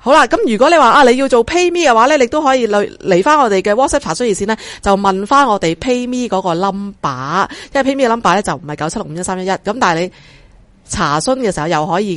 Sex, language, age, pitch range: female, Chinese, 30-49, 180-260 Hz